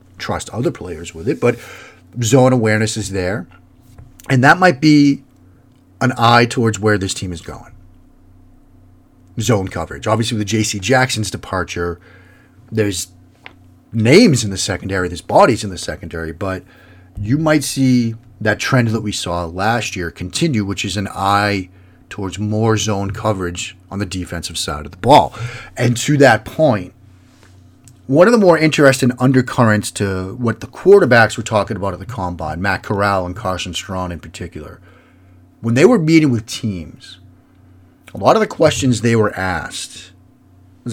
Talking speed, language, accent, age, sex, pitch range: 160 wpm, English, American, 40-59, male, 90-120 Hz